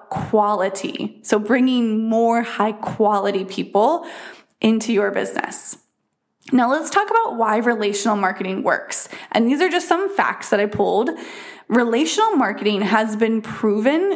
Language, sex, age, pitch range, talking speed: English, female, 20-39, 215-280 Hz, 135 wpm